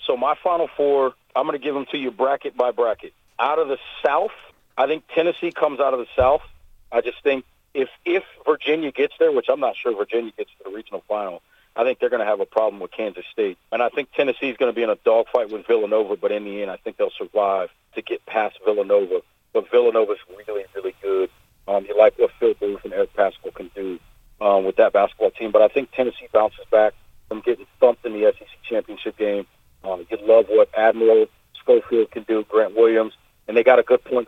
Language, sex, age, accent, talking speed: English, male, 40-59, American, 230 wpm